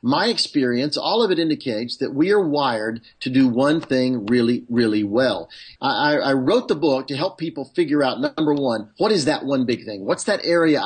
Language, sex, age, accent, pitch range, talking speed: English, male, 40-59, American, 130-190 Hz, 210 wpm